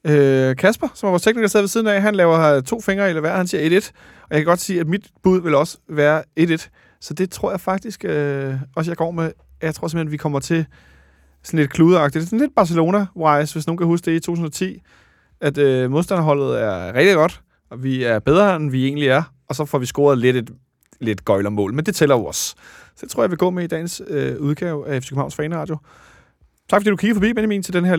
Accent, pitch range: native, 145-185 Hz